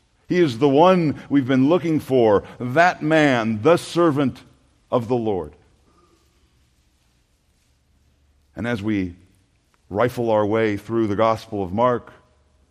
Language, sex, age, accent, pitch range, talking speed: English, male, 60-79, American, 85-135 Hz, 125 wpm